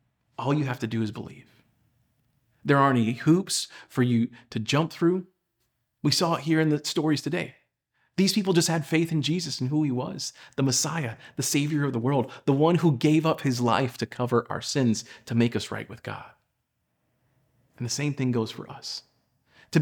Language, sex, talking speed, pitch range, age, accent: English, male, 205 wpm, 120-150 Hz, 40-59, American